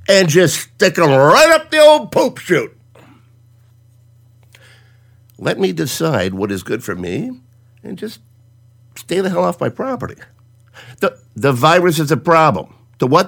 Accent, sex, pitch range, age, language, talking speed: American, male, 120-160 Hz, 50-69, English, 155 wpm